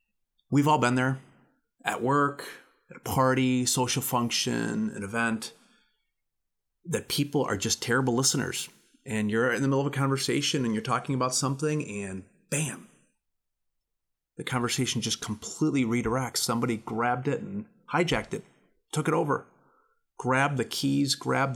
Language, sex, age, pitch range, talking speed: English, male, 30-49, 110-145 Hz, 145 wpm